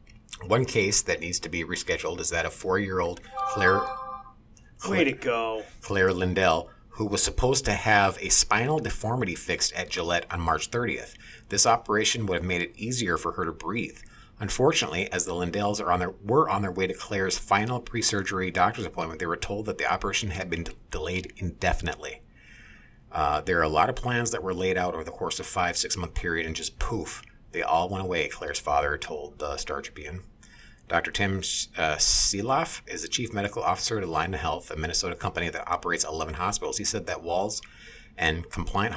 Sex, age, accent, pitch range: male, 40-59, American, 85-105 Hz